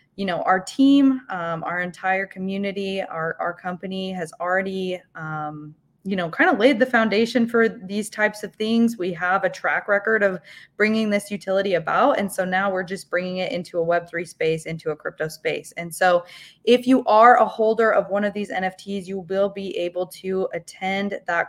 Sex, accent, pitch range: female, American, 170-200 Hz